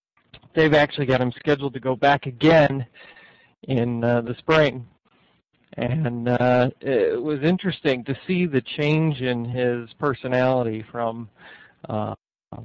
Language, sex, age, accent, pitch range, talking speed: English, male, 50-69, American, 120-145 Hz, 130 wpm